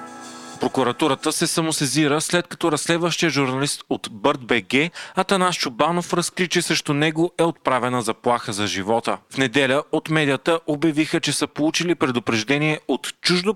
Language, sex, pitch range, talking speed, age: Bulgarian, male, 125-160 Hz, 140 wpm, 40-59